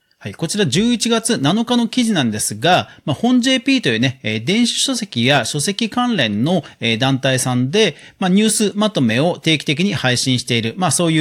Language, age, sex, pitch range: Japanese, 40-59, male, 130-215 Hz